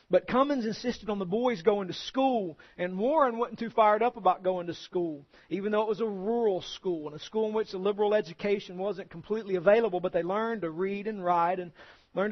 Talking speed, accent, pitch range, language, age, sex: 225 wpm, American, 185-225 Hz, English, 40-59, male